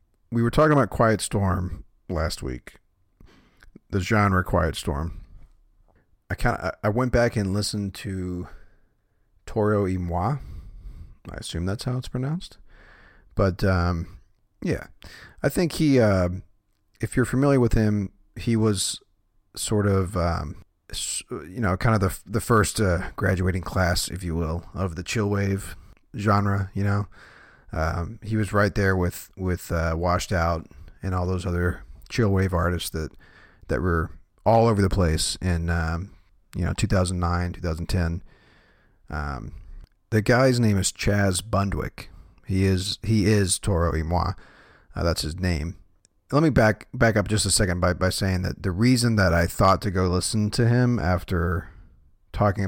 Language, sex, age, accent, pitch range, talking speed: English, male, 30-49, American, 90-105 Hz, 160 wpm